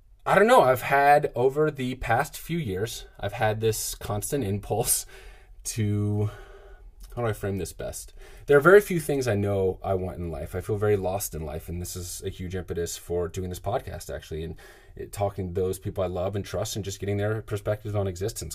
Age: 30-49